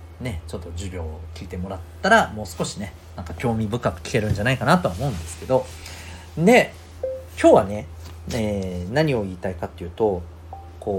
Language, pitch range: Japanese, 85-110 Hz